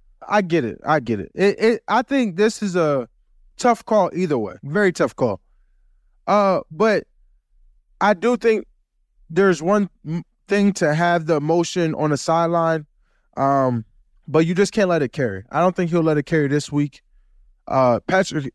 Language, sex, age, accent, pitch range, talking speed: English, male, 20-39, American, 130-200 Hz, 175 wpm